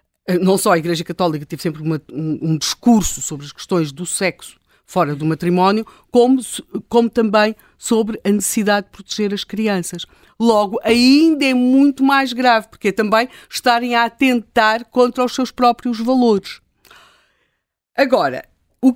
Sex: female